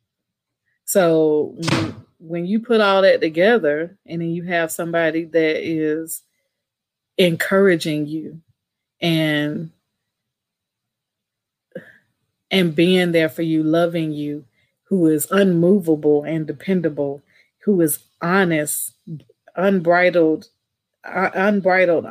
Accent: American